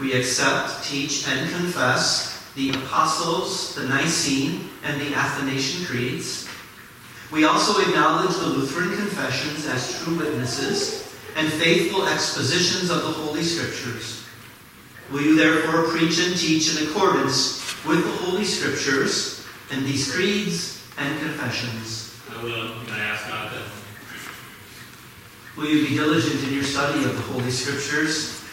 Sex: male